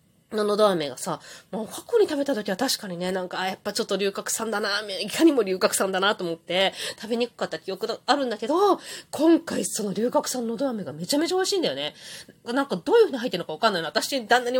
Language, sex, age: Japanese, female, 20-39